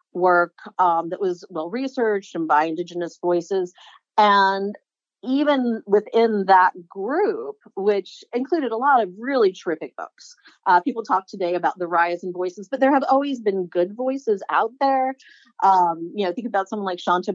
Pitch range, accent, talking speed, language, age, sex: 180-230 Hz, American, 165 wpm, English, 40-59, female